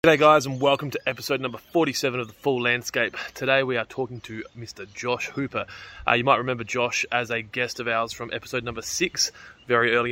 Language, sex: English, male